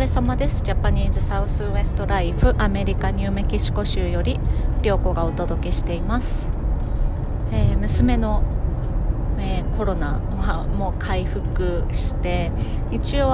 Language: Japanese